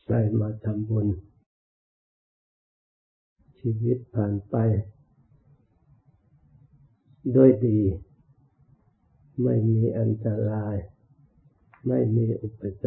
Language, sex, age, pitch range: Thai, male, 60-79, 105-135 Hz